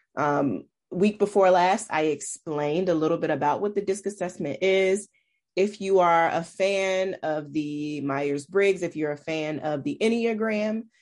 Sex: female